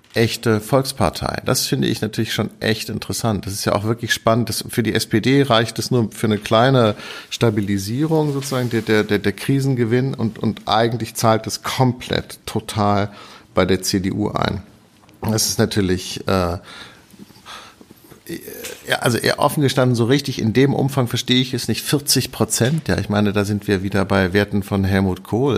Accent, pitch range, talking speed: German, 100-115 Hz, 175 wpm